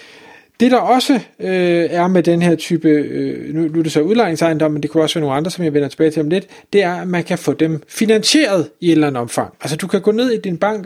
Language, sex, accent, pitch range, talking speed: Danish, male, native, 155-200 Hz, 275 wpm